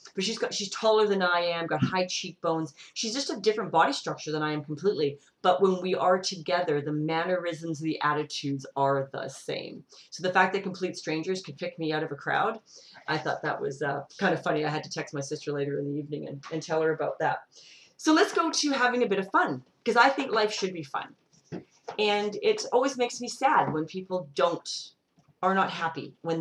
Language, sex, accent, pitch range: English, female, American, 145-195 Hz